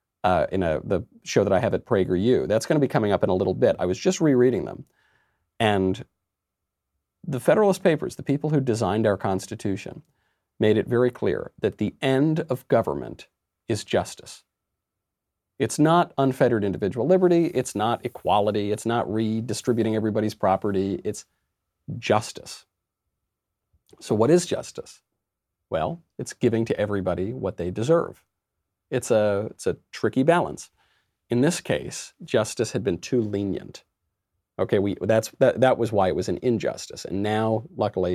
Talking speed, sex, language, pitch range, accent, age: 155 wpm, male, English, 95-135 Hz, American, 40-59